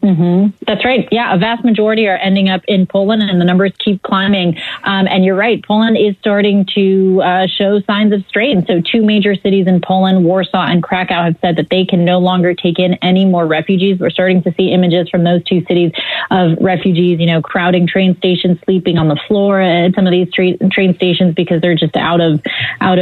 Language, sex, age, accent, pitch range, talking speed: English, female, 30-49, American, 175-200 Hz, 220 wpm